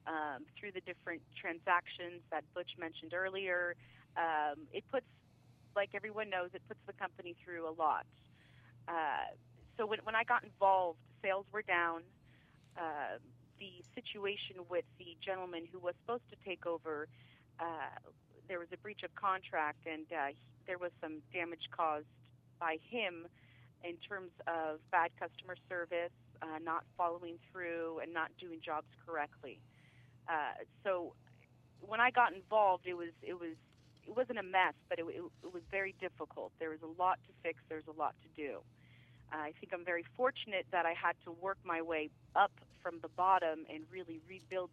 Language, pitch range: English, 155-190 Hz